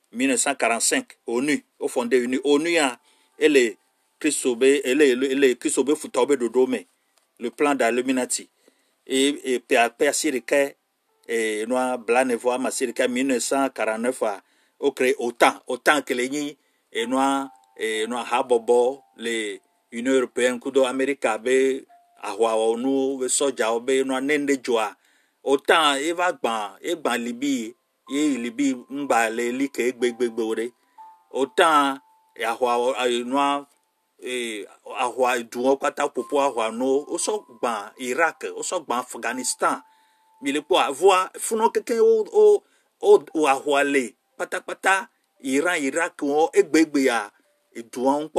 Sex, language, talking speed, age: male, French, 95 wpm, 50-69